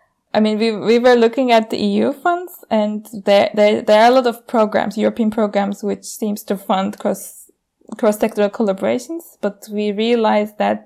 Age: 20-39